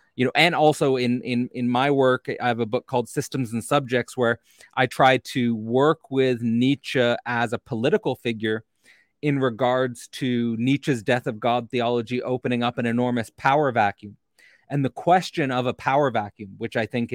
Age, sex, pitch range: 30-49, male, 115-130 Hz